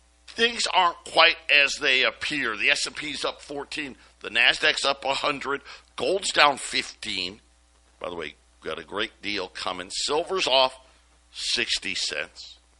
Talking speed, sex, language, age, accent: 150 wpm, male, English, 60-79, American